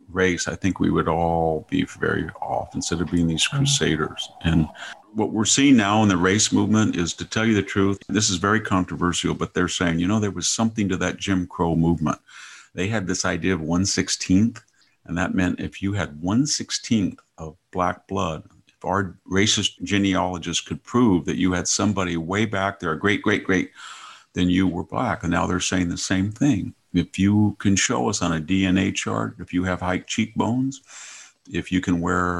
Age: 50-69